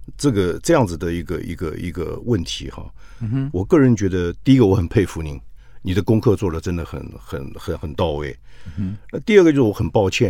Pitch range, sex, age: 90-125 Hz, male, 50-69